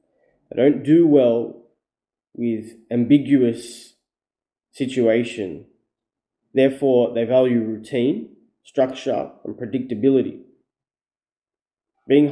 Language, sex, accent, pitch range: English, male, Australian, 115-145 Hz